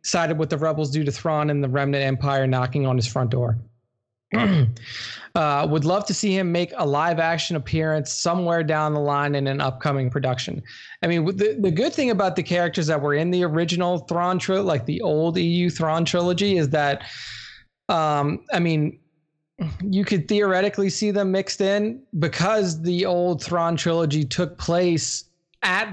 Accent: American